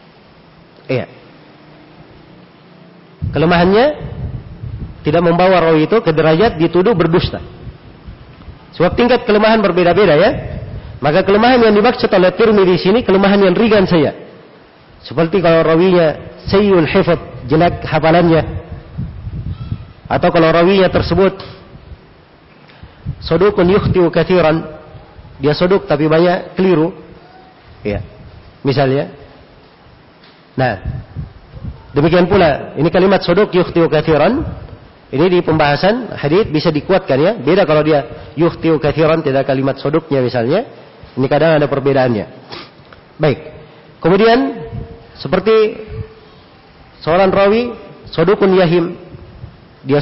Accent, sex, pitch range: Indonesian, male, 150-185 Hz